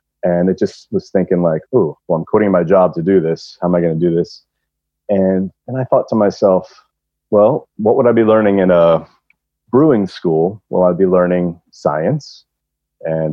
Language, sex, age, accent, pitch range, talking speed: English, male, 30-49, American, 85-110 Hz, 200 wpm